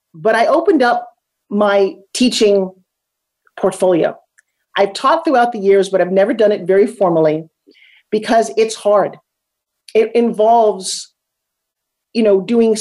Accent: American